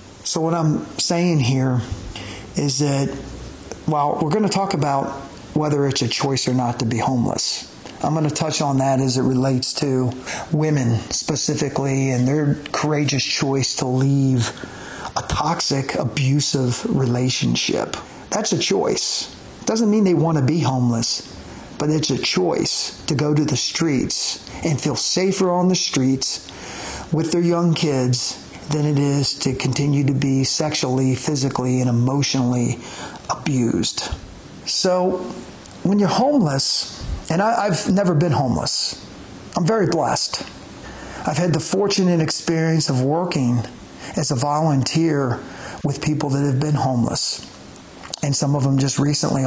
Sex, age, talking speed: male, 40-59, 145 wpm